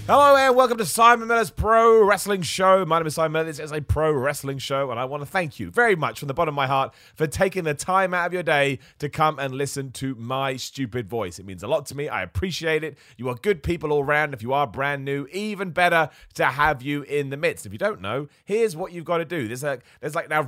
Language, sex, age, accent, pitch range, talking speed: English, male, 30-49, British, 115-155 Hz, 275 wpm